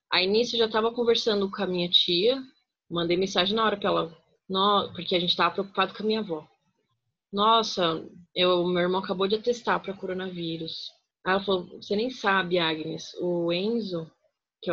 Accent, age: Brazilian, 20-39